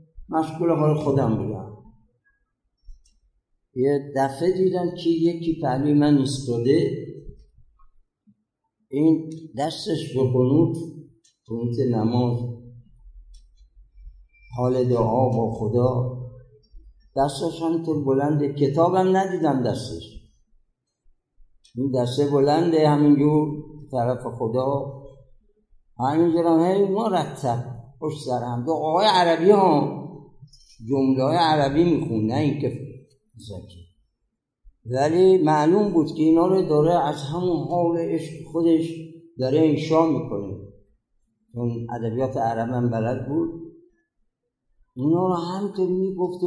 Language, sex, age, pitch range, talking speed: Persian, male, 60-79, 125-170 Hz, 95 wpm